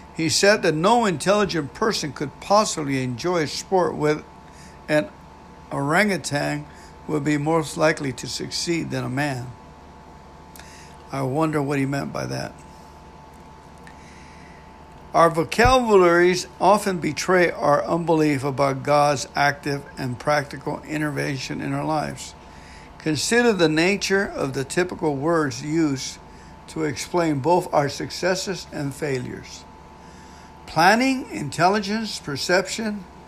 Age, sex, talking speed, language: 60-79, male, 115 wpm, English